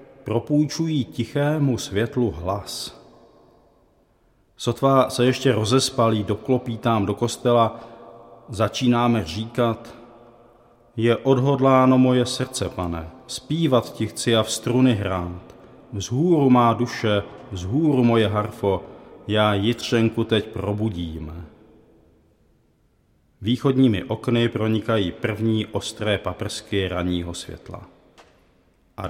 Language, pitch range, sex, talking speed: Czech, 105-120 Hz, male, 95 wpm